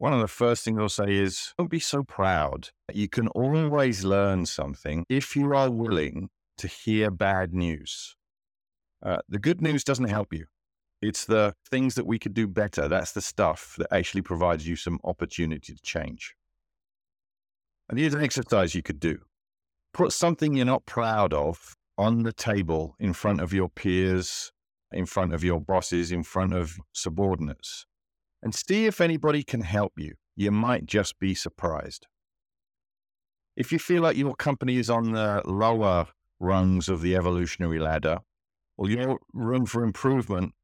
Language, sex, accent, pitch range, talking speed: English, male, British, 90-125 Hz, 170 wpm